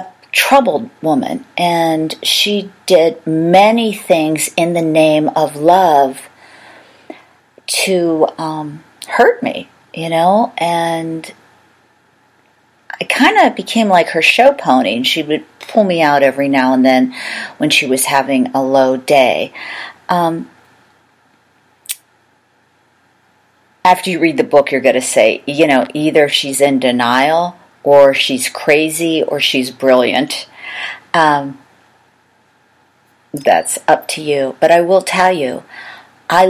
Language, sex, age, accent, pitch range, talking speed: English, female, 40-59, American, 145-180 Hz, 125 wpm